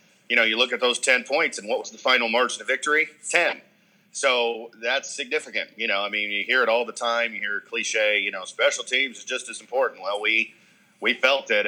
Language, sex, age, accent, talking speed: English, male, 40-59, American, 235 wpm